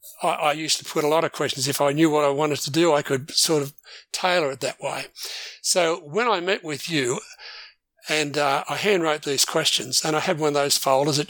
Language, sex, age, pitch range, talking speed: English, male, 50-69, 150-180 Hz, 235 wpm